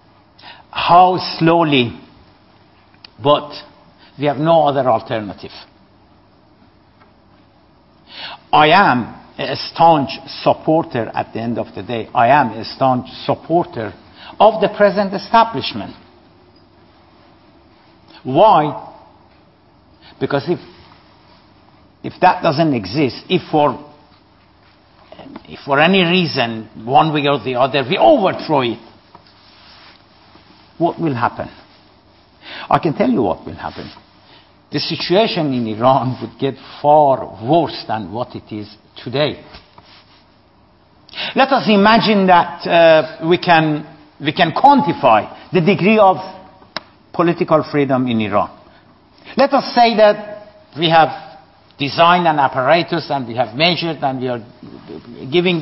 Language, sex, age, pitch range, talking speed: Persian, male, 60-79, 120-175 Hz, 115 wpm